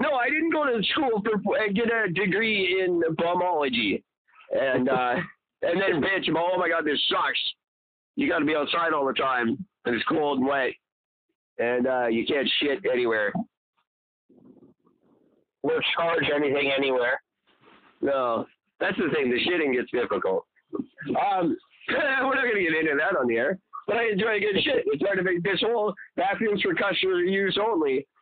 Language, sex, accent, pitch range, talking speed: English, male, American, 150-240 Hz, 175 wpm